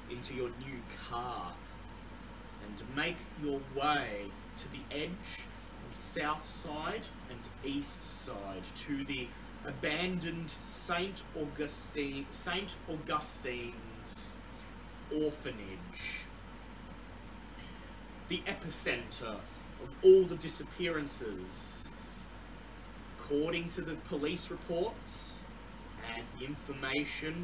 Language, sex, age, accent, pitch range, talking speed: English, male, 30-49, Australian, 115-155 Hz, 85 wpm